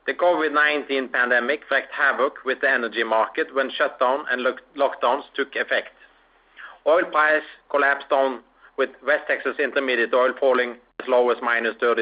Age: 30-49